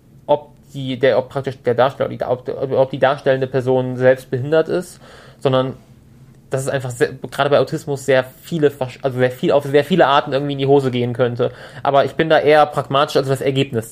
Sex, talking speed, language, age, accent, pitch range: male, 205 wpm, German, 20-39, German, 125-145 Hz